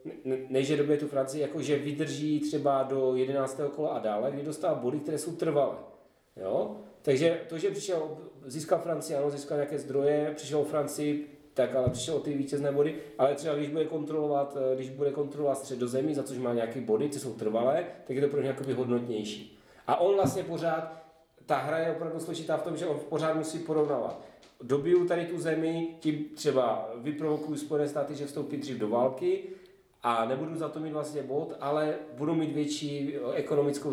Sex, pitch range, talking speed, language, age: male, 130-155 Hz, 190 wpm, Czech, 30-49